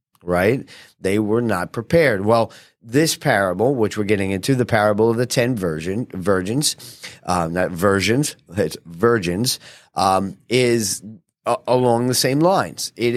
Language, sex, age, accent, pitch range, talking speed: English, male, 40-59, American, 100-125 Hz, 145 wpm